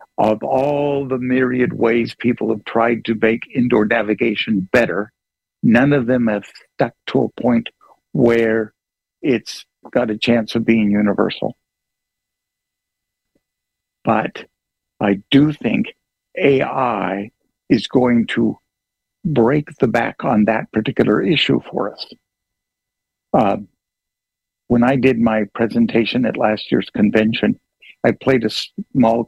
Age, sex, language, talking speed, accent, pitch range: 60-79, male, English, 125 wpm, American, 105-130 Hz